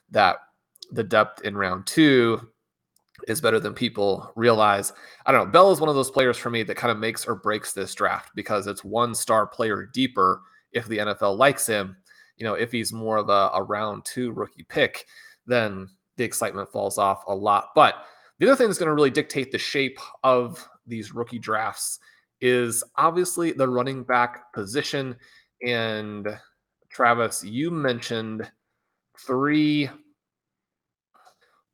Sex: male